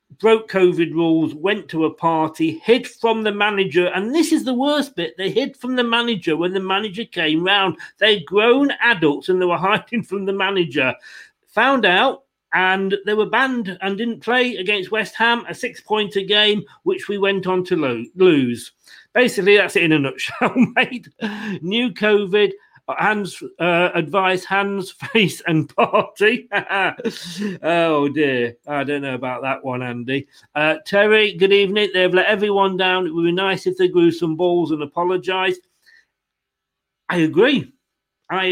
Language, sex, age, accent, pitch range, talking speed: English, male, 40-59, British, 170-215 Hz, 165 wpm